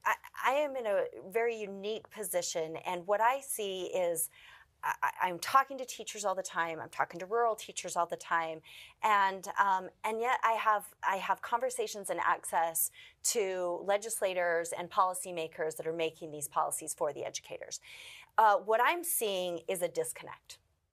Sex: female